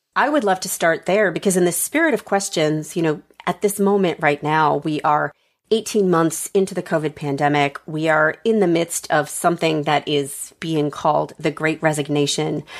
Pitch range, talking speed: 155-200 Hz, 190 wpm